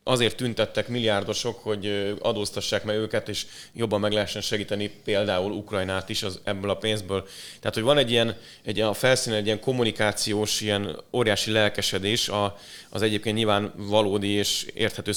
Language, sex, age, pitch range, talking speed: Hungarian, male, 30-49, 105-120 Hz, 160 wpm